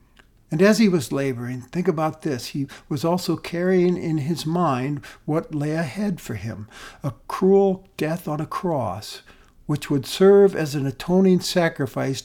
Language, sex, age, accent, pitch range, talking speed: English, male, 60-79, American, 135-185 Hz, 160 wpm